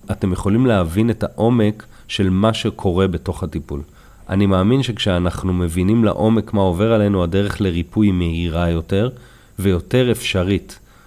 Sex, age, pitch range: male, 30-49, 90-110 Hz